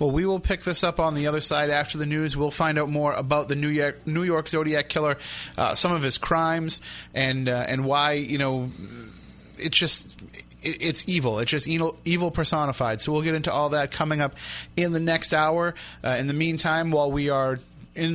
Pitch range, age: 135-160 Hz, 30-49